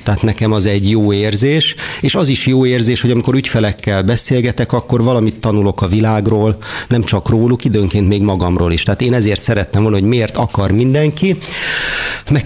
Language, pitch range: Hungarian, 105-145 Hz